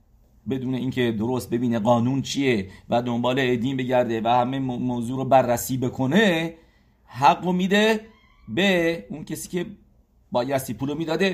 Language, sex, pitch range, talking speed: English, male, 110-145 Hz, 140 wpm